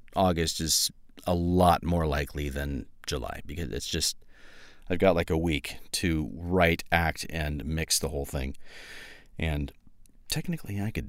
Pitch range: 80-100 Hz